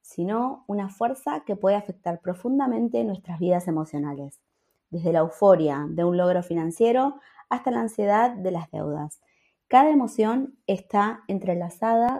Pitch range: 180-245 Hz